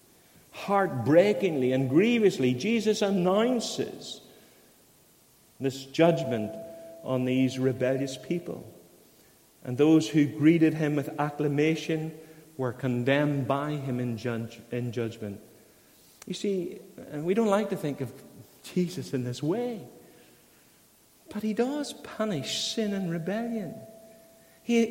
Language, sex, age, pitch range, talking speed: English, male, 50-69, 140-210 Hz, 115 wpm